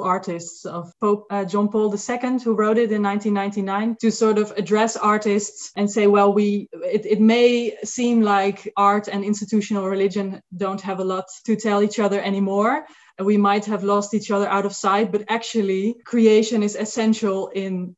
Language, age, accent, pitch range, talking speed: English, 20-39, Dutch, 190-220 Hz, 180 wpm